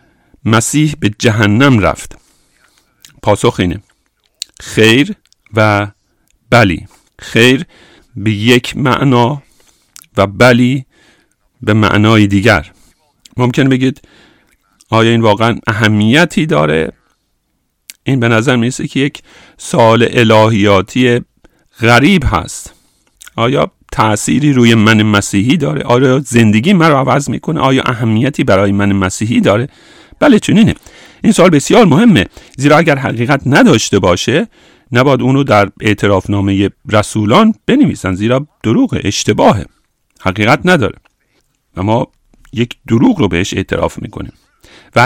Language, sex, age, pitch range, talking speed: English, male, 50-69, 105-135 Hz, 110 wpm